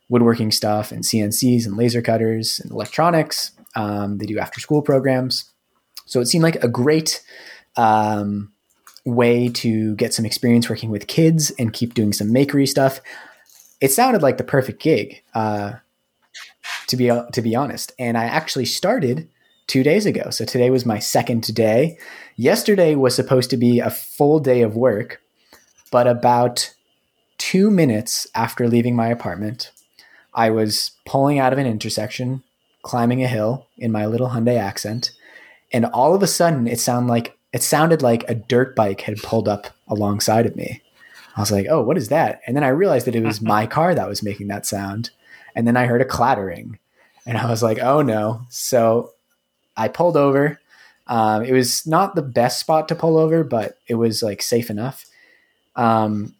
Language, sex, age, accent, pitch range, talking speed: English, male, 20-39, American, 110-130 Hz, 175 wpm